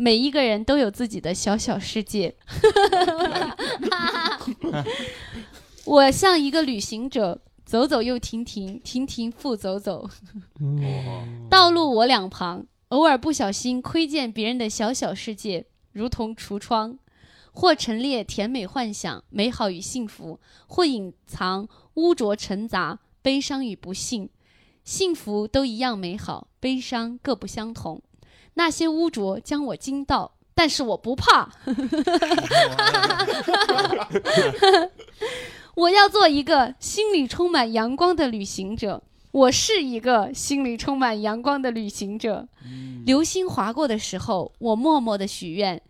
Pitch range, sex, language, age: 210-315 Hz, female, Chinese, 20-39